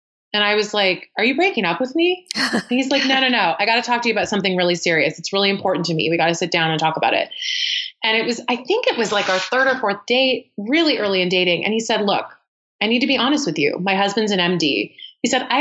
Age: 30-49